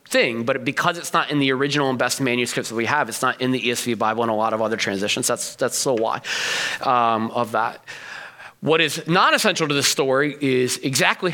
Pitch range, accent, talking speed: 125-170 Hz, American, 215 wpm